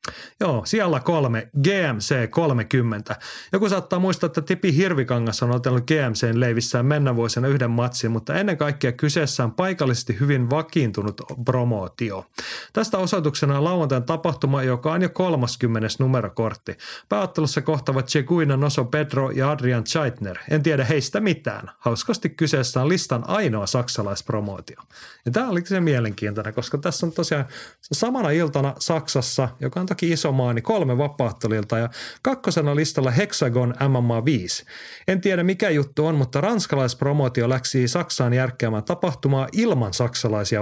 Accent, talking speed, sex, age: native, 130 wpm, male, 30-49